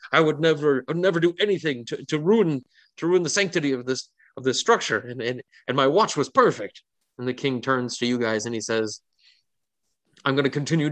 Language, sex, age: English, male, 30-49